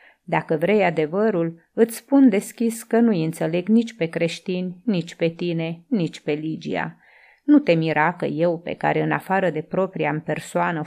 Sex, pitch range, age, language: female, 160-215 Hz, 30-49, Romanian